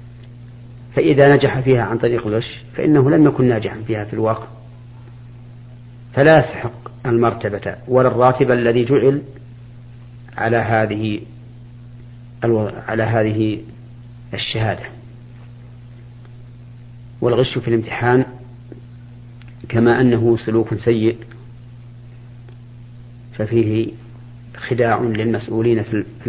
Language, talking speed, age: Arabic, 80 wpm, 40-59